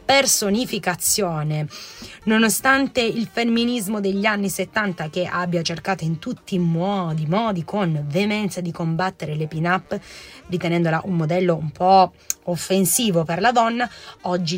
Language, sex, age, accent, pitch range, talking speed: Italian, female, 20-39, native, 175-220 Hz, 130 wpm